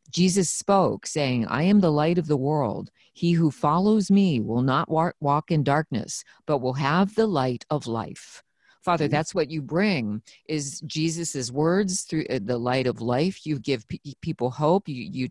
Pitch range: 130-180 Hz